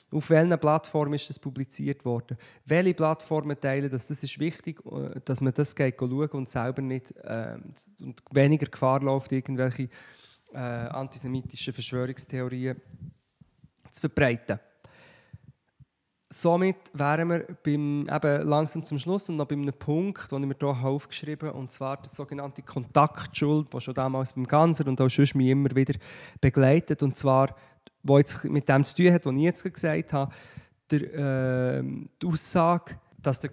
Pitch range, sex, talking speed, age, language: 130-150 Hz, male, 150 wpm, 20-39, German